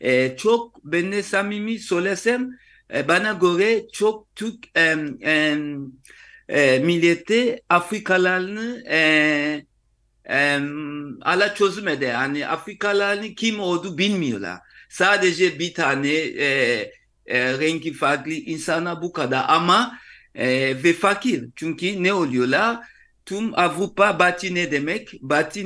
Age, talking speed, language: 60-79, 100 wpm, Turkish